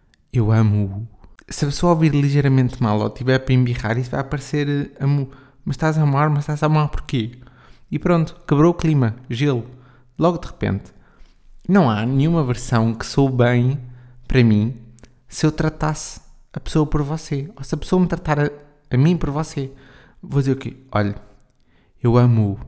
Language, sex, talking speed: Portuguese, male, 180 wpm